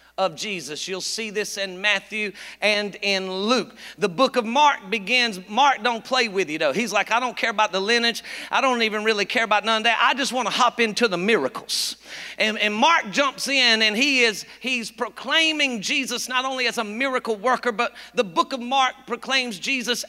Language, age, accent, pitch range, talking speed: English, 40-59, American, 215-255 Hz, 210 wpm